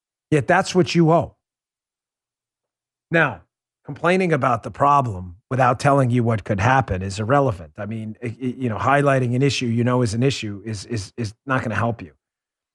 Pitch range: 115-165 Hz